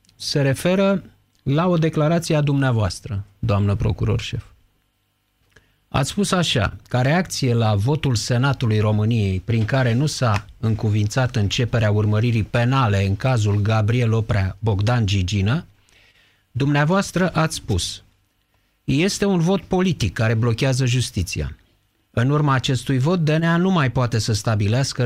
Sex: male